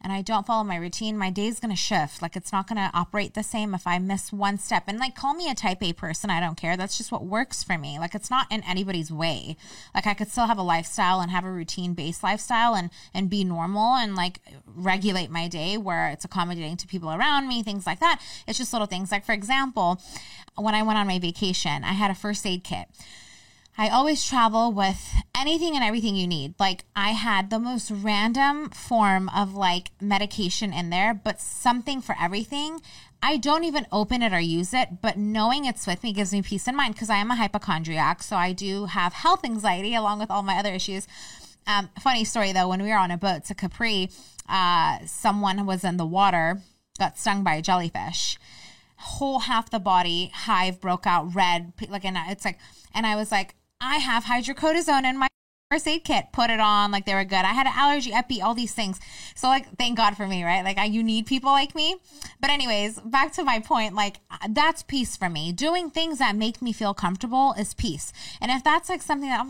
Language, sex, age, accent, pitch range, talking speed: English, female, 20-39, American, 185-240 Hz, 225 wpm